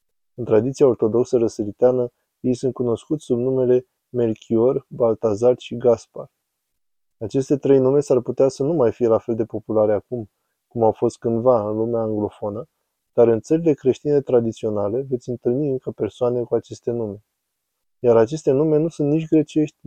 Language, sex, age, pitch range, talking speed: Romanian, male, 20-39, 115-130 Hz, 160 wpm